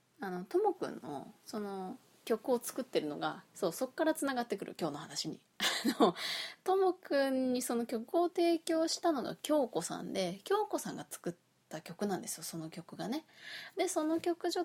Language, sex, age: Japanese, female, 20-39